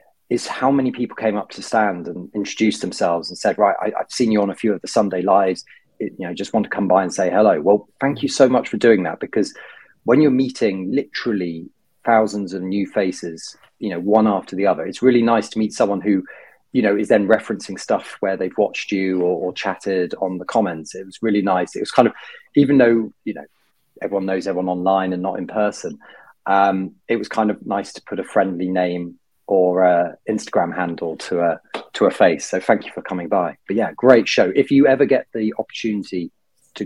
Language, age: English, 30-49